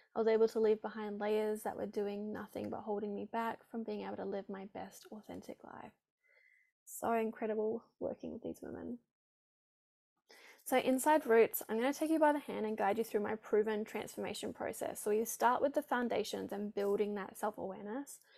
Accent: Australian